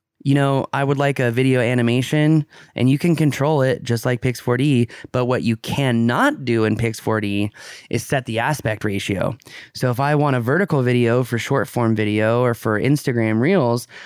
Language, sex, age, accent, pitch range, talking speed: English, male, 20-39, American, 115-140 Hz, 185 wpm